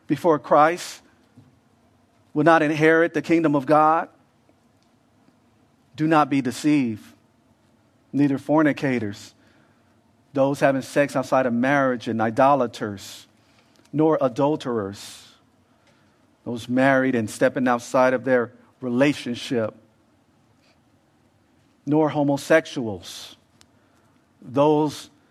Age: 50-69